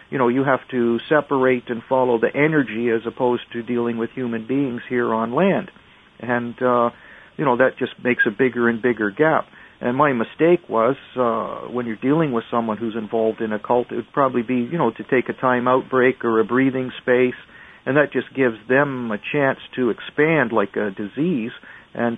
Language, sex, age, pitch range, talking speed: English, male, 50-69, 115-130 Hz, 205 wpm